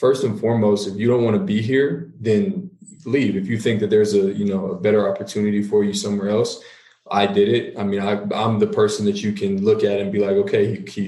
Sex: male